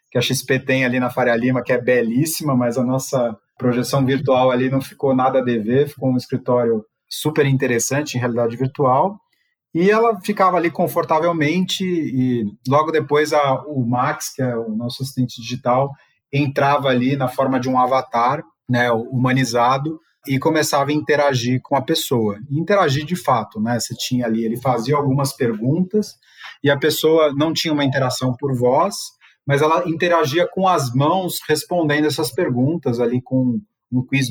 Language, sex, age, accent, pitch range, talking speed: Portuguese, male, 30-49, Brazilian, 125-150 Hz, 165 wpm